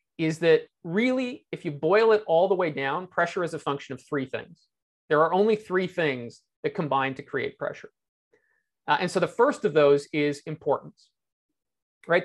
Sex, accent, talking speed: male, American, 185 wpm